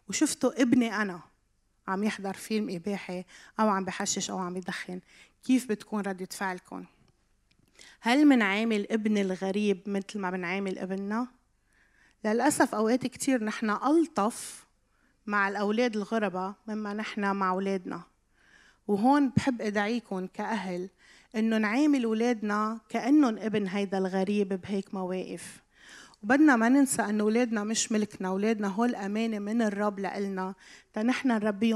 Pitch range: 195-230 Hz